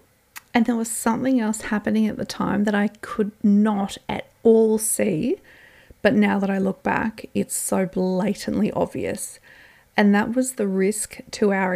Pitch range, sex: 195-240 Hz, female